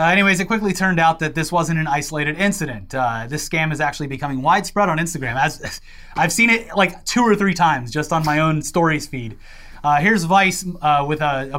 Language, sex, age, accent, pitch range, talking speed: English, male, 30-49, American, 145-185 Hz, 230 wpm